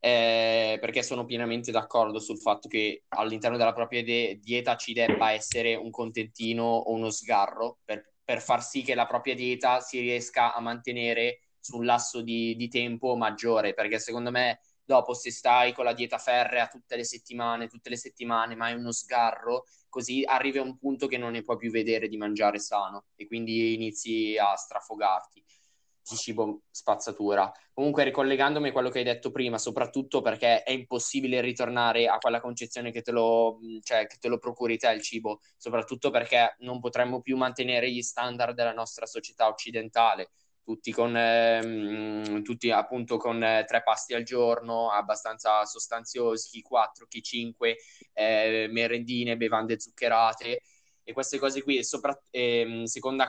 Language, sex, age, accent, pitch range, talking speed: Italian, male, 20-39, native, 115-125 Hz, 165 wpm